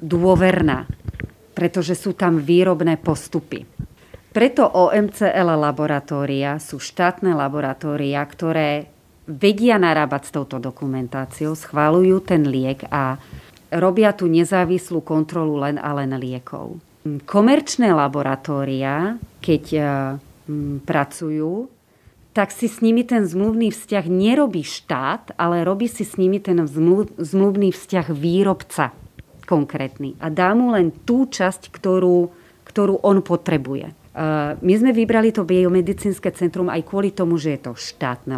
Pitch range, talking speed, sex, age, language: 145-185 Hz, 120 wpm, female, 40-59, Slovak